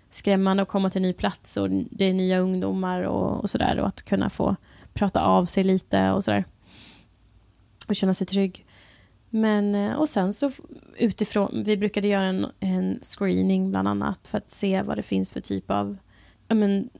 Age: 20-39